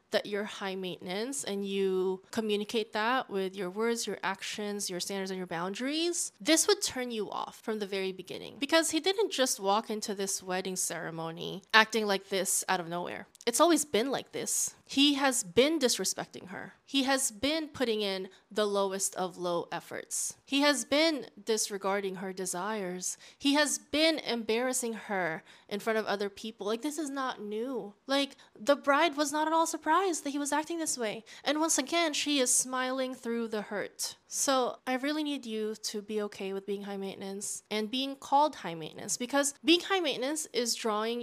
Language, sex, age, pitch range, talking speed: English, female, 20-39, 200-275 Hz, 190 wpm